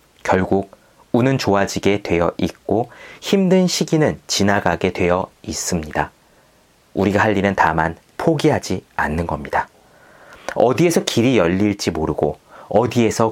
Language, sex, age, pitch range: Korean, male, 30-49, 90-135 Hz